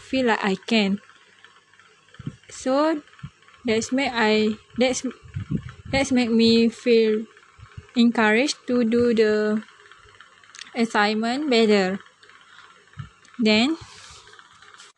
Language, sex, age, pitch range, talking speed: English, female, 20-39, 215-250 Hz, 80 wpm